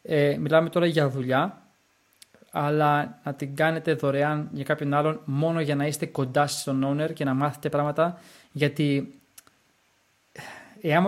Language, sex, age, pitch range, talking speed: Greek, male, 20-39, 145-185 Hz, 140 wpm